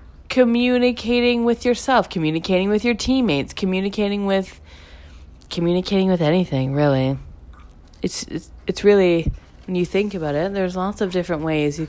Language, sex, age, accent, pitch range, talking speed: English, female, 20-39, American, 150-235 Hz, 140 wpm